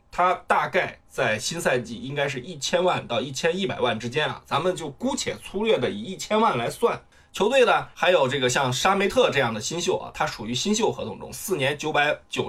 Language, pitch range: Chinese, 130-185 Hz